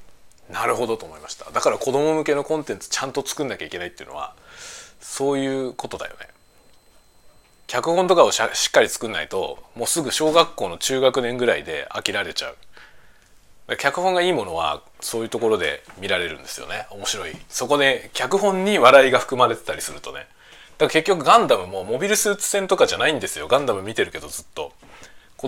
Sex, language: male, Japanese